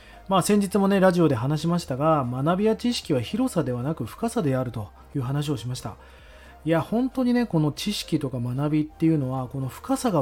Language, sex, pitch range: Japanese, male, 130-205 Hz